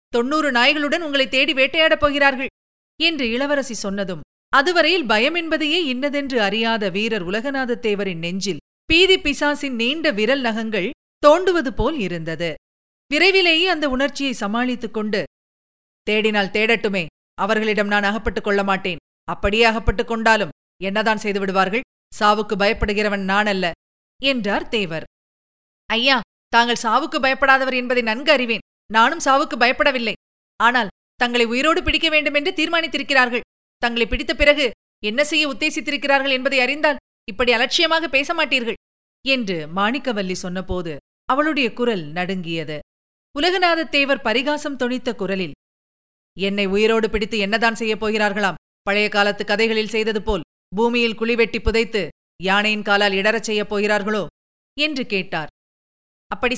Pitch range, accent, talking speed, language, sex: 205-280 Hz, native, 115 wpm, Tamil, female